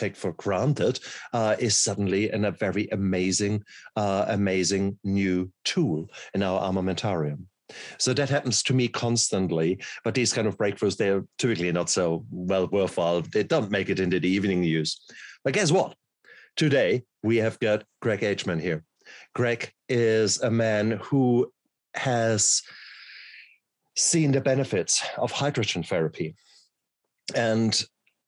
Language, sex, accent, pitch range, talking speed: English, male, German, 100-125 Hz, 140 wpm